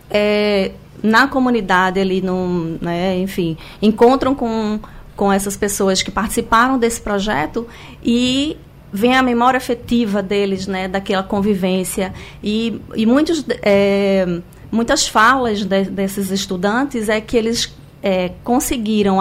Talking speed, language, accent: 120 wpm, Portuguese, Brazilian